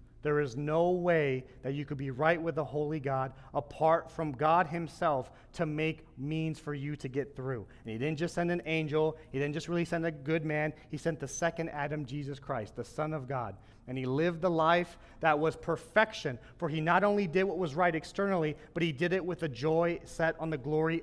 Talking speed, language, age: 225 wpm, English, 30-49